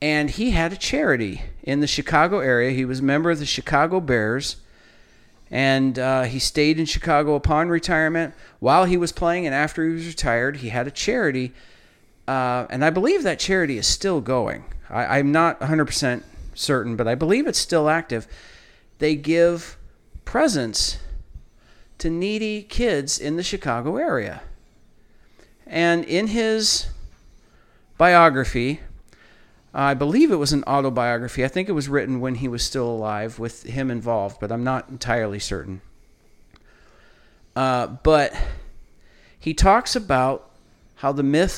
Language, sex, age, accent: English, male, 40-59, American